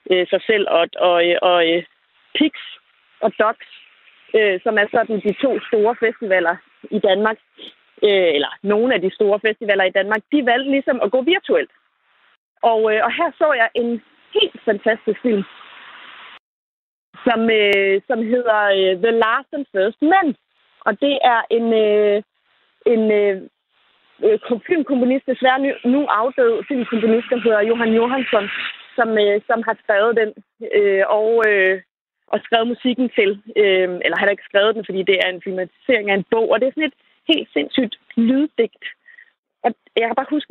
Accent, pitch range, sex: native, 210-260 Hz, female